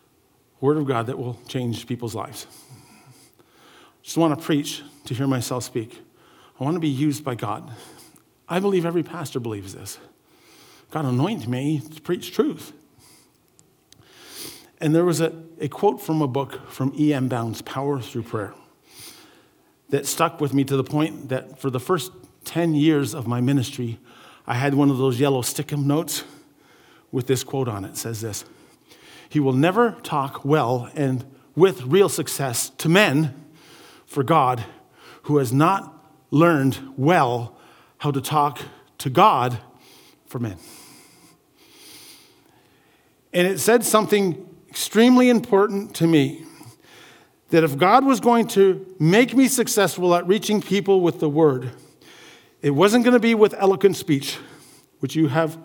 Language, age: English, 50-69